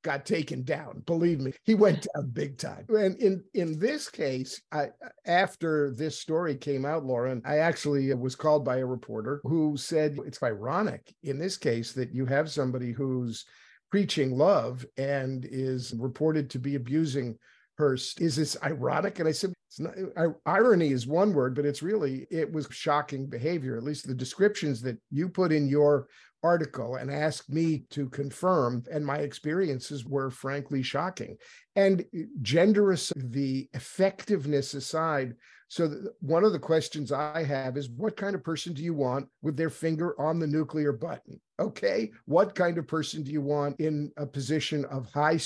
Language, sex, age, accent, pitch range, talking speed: English, male, 50-69, American, 135-165 Hz, 175 wpm